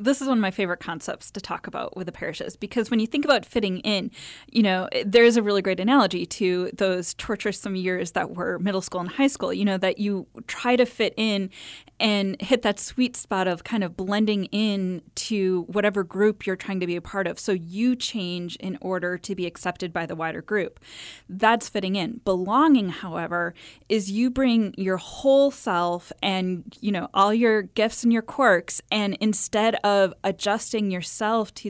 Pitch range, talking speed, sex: 185-225 Hz, 200 wpm, female